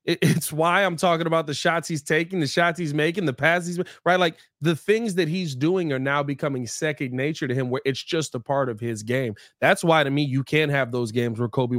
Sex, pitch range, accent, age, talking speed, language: male, 140-180 Hz, American, 20-39, 245 wpm, English